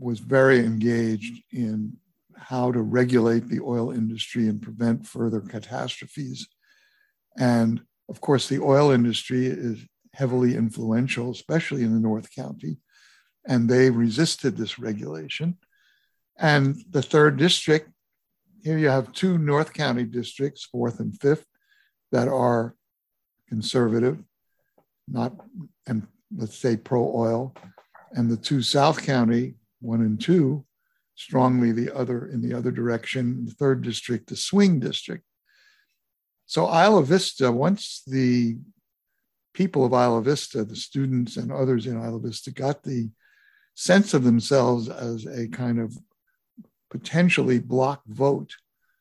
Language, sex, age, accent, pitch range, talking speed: English, male, 60-79, American, 115-155 Hz, 125 wpm